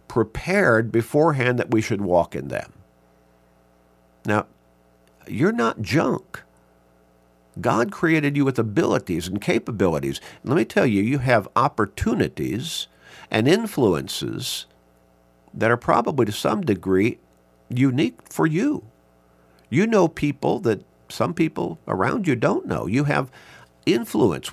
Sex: male